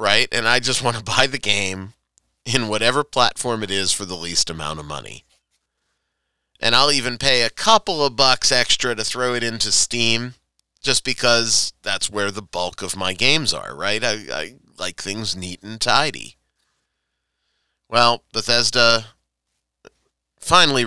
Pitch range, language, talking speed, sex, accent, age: 95-125 Hz, English, 160 wpm, male, American, 30-49